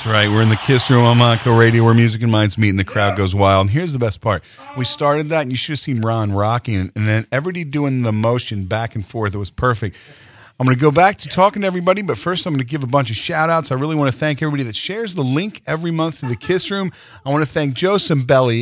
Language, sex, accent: English, male, American